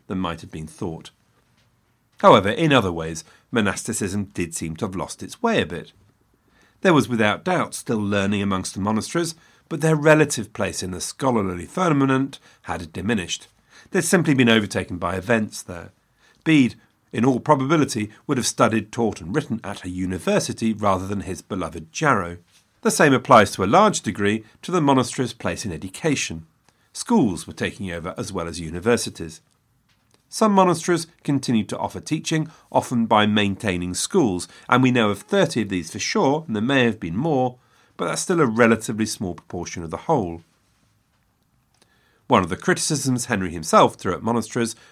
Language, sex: English, male